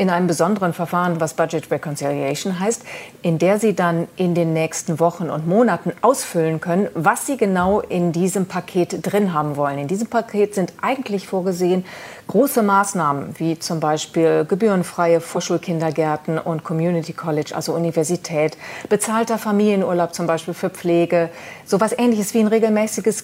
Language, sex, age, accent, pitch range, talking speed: German, female, 40-59, German, 165-205 Hz, 150 wpm